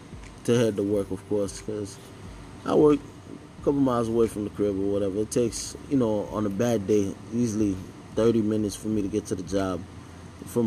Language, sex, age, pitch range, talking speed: English, male, 20-39, 100-125 Hz, 210 wpm